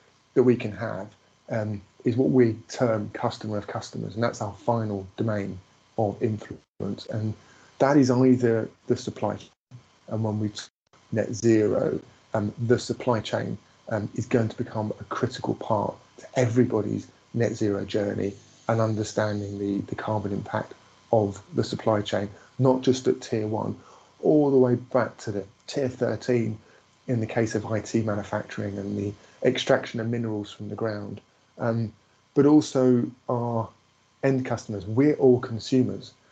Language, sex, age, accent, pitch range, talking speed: English, male, 30-49, British, 105-125 Hz, 155 wpm